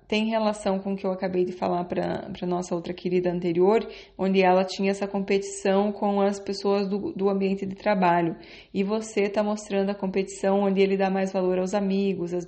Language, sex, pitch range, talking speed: Portuguese, female, 180-200 Hz, 200 wpm